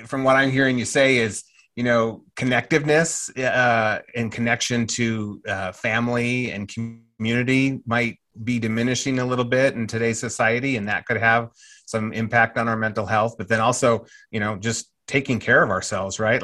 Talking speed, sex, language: 175 wpm, male, English